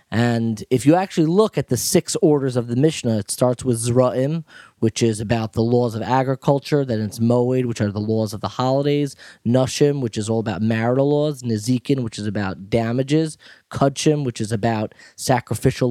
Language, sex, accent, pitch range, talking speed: English, male, American, 115-140 Hz, 190 wpm